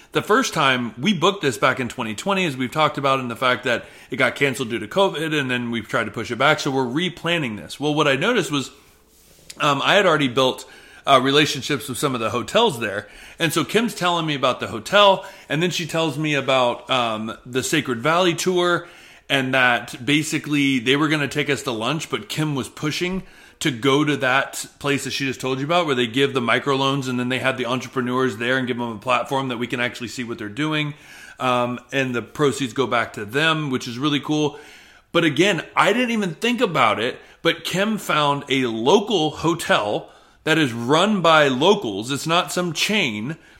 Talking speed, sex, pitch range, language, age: 215 wpm, male, 130-165 Hz, English, 30-49